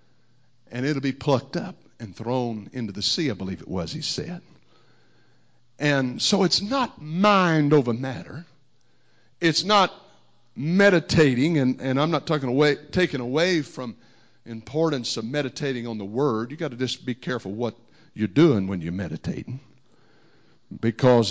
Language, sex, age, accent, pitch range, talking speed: English, male, 60-79, American, 120-155 Hz, 145 wpm